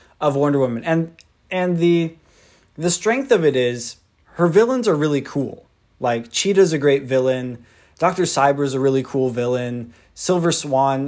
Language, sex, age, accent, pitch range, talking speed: English, male, 20-39, American, 125-145 Hz, 155 wpm